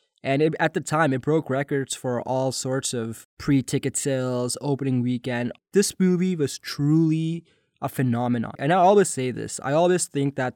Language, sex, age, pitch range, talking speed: English, male, 20-39, 125-155 Hz, 170 wpm